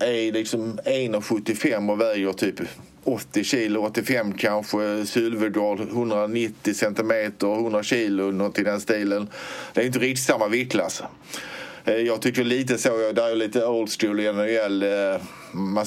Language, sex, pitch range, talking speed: Swedish, male, 100-115 Hz, 135 wpm